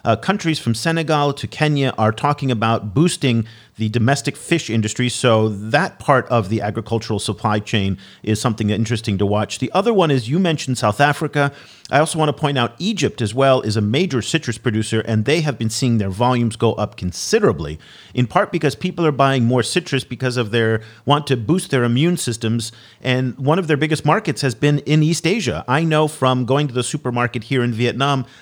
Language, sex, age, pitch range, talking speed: English, male, 40-59, 115-145 Hz, 205 wpm